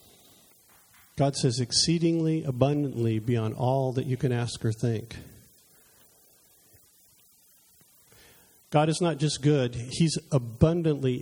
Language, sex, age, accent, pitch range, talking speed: English, male, 50-69, American, 120-160 Hz, 100 wpm